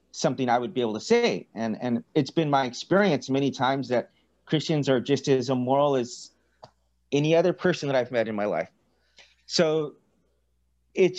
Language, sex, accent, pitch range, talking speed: English, male, American, 115-145 Hz, 175 wpm